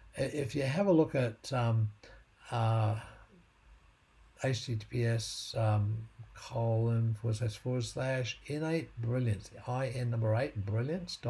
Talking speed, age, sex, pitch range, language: 115 wpm, 60-79, male, 110-130 Hz, English